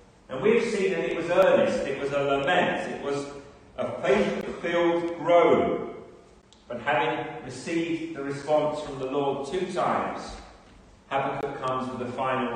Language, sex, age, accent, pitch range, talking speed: English, male, 40-59, British, 130-190 Hz, 155 wpm